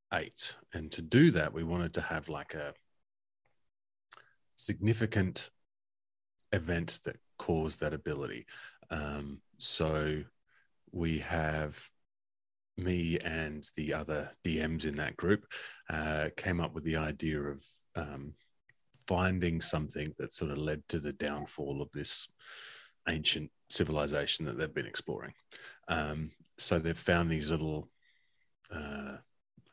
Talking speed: 125 wpm